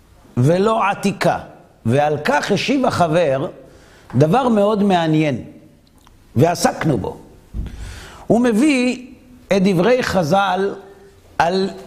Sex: male